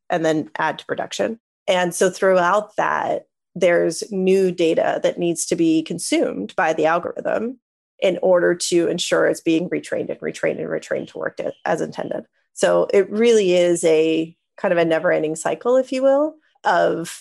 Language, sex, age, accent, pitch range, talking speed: English, female, 30-49, American, 170-230 Hz, 170 wpm